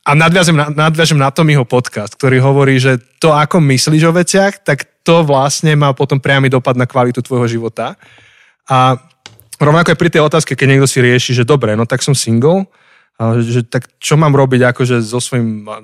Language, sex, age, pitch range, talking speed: Slovak, male, 20-39, 125-150 Hz, 190 wpm